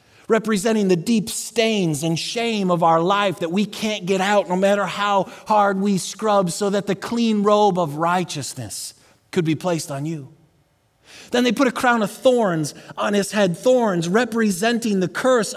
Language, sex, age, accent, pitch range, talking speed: English, male, 30-49, American, 170-225 Hz, 175 wpm